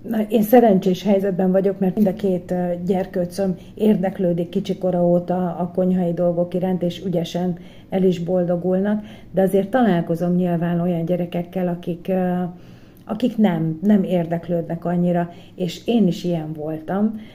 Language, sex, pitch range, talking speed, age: Hungarian, female, 175-210 Hz, 130 wpm, 40-59